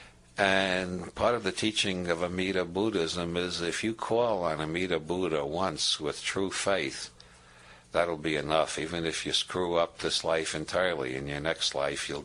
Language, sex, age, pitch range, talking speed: English, male, 60-79, 75-100 Hz, 170 wpm